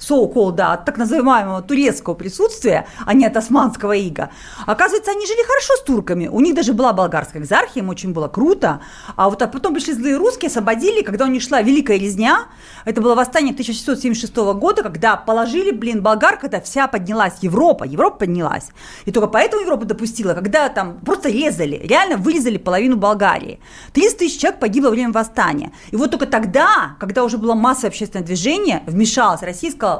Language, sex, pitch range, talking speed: Russian, female, 215-300 Hz, 180 wpm